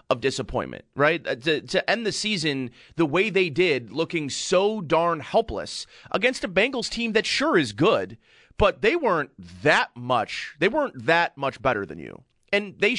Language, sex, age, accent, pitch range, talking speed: English, male, 30-49, American, 155-205 Hz, 175 wpm